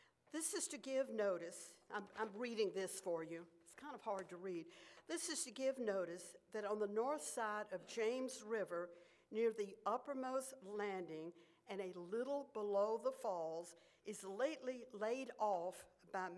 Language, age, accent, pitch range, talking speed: English, 60-79, American, 190-250 Hz, 165 wpm